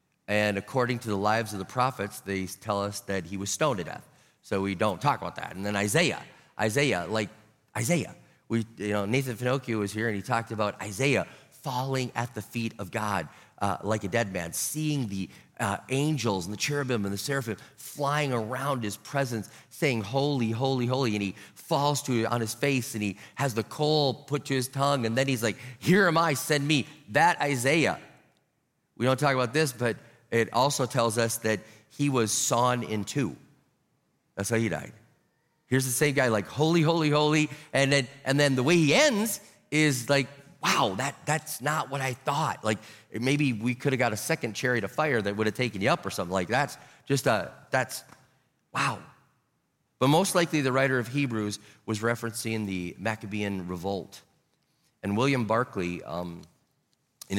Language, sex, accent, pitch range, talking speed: English, male, American, 105-140 Hz, 195 wpm